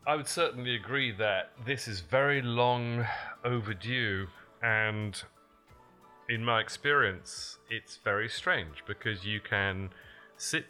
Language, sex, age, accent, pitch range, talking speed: English, male, 30-49, British, 100-120 Hz, 120 wpm